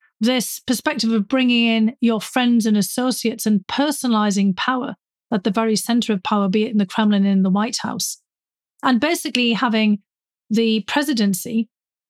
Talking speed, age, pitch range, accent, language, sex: 165 wpm, 40-59, 205-245 Hz, British, English, female